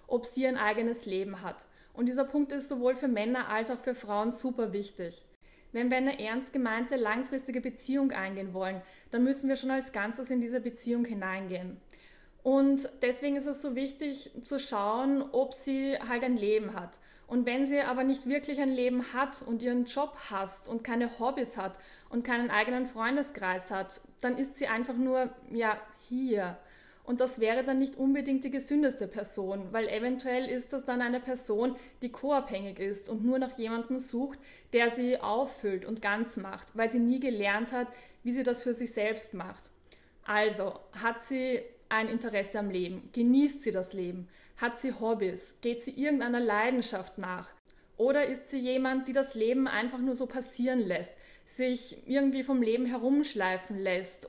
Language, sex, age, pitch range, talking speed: German, female, 20-39, 215-260 Hz, 175 wpm